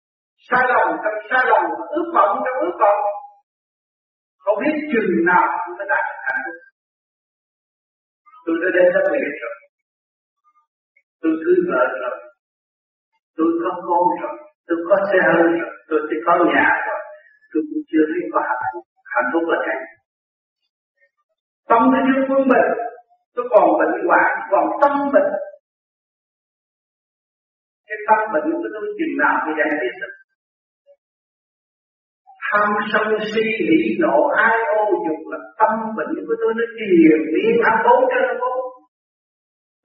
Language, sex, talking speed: Vietnamese, male, 145 wpm